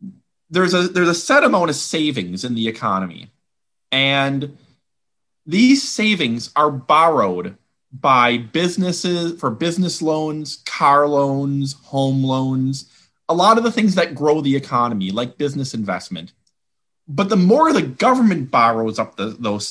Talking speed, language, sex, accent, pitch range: 135 wpm, English, male, American, 125-180 Hz